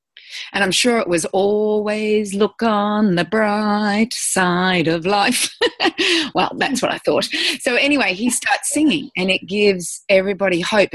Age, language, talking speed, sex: 30-49, English, 155 wpm, female